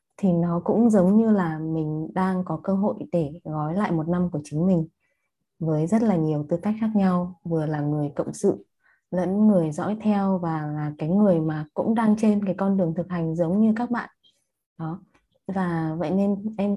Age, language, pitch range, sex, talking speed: 20-39, Vietnamese, 165-205 Hz, female, 210 wpm